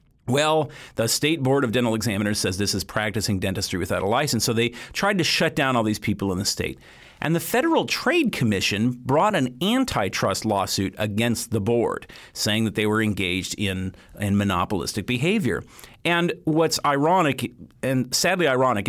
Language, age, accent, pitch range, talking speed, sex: English, 40-59, American, 105-145 Hz, 170 wpm, male